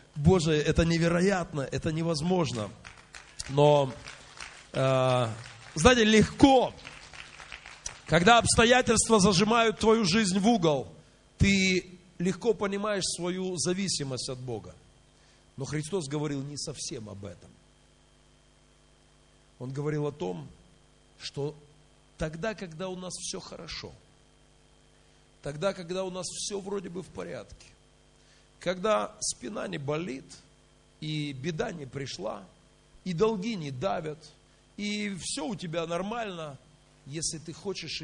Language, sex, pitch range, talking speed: Russian, male, 120-185 Hz, 110 wpm